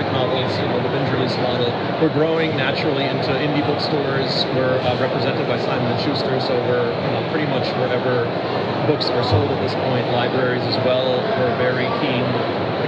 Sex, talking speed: male, 170 wpm